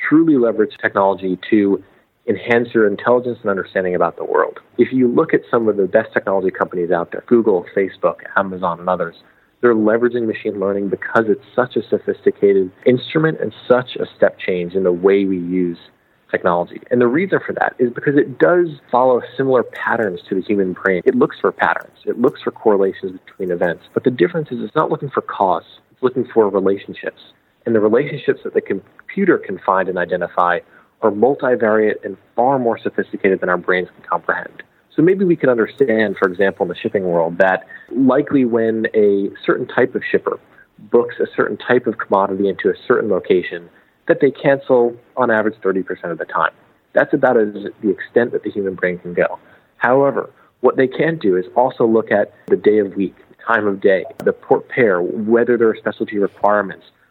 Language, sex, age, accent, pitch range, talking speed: English, male, 30-49, American, 100-140 Hz, 190 wpm